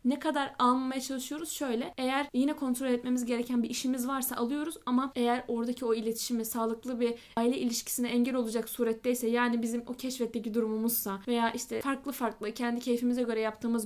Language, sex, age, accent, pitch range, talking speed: Turkish, female, 10-29, native, 230-280 Hz, 170 wpm